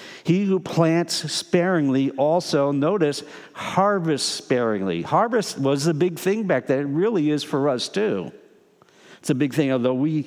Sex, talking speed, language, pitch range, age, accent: male, 160 wpm, English, 115-155 Hz, 50-69, American